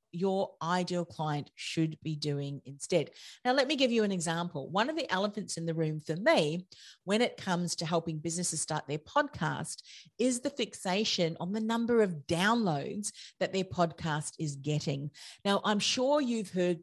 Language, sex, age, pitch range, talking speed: English, female, 40-59, 155-200 Hz, 180 wpm